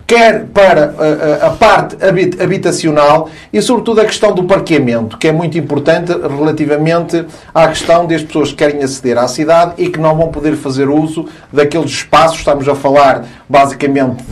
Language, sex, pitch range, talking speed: Portuguese, male, 135-165 Hz, 160 wpm